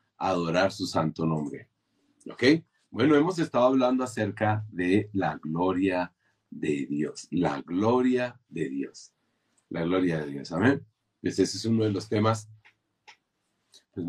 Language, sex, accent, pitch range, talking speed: Spanish, male, Mexican, 105-145 Hz, 130 wpm